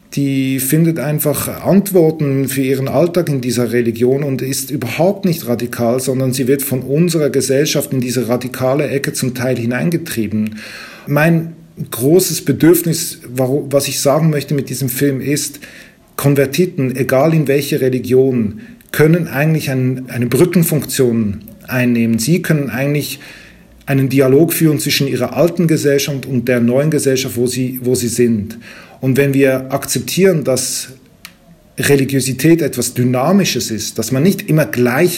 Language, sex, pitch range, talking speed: German, male, 125-150 Hz, 140 wpm